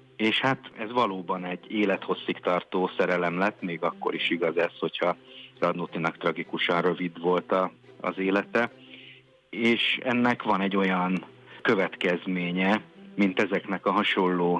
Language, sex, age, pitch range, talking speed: Hungarian, male, 50-69, 85-105 Hz, 125 wpm